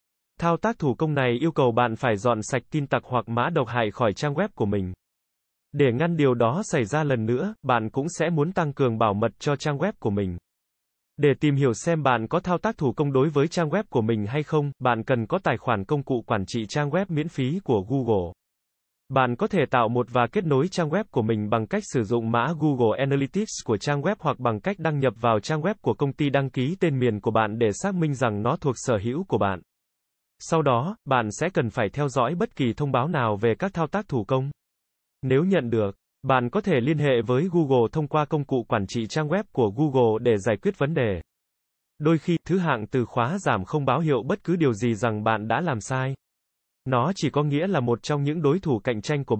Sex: male